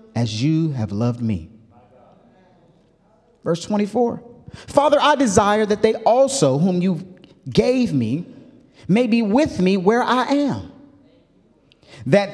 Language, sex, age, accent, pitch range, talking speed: English, male, 40-59, American, 140-235 Hz, 120 wpm